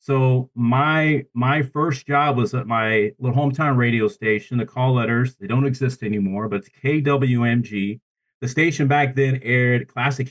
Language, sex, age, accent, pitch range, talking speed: English, male, 40-59, American, 120-140 Hz, 165 wpm